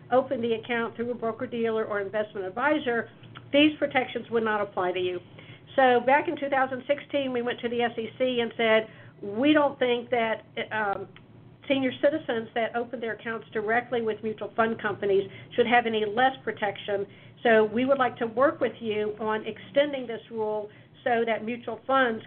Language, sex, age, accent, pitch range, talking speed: English, female, 50-69, American, 215-260 Hz, 175 wpm